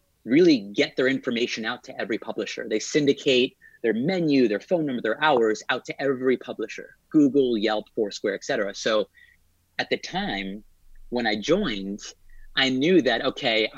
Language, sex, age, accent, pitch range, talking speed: English, male, 30-49, American, 105-130 Hz, 160 wpm